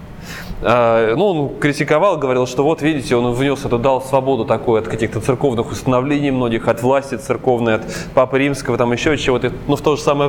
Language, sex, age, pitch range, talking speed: Russian, male, 20-39, 125-155 Hz, 185 wpm